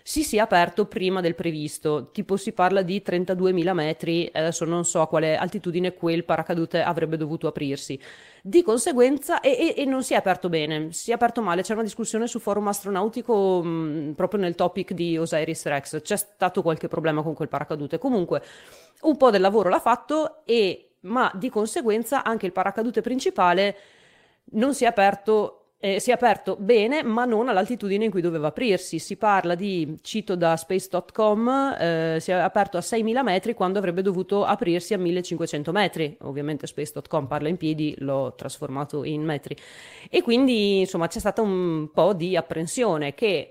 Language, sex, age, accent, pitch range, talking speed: Italian, female, 30-49, native, 165-210 Hz, 175 wpm